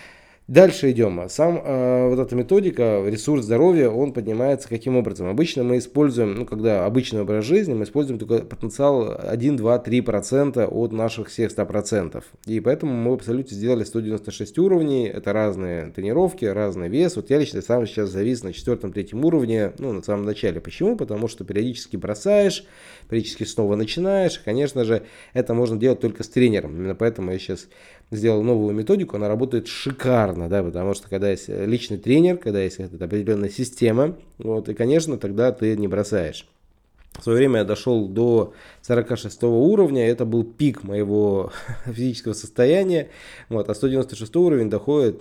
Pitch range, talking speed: 105-130 Hz, 160 wpm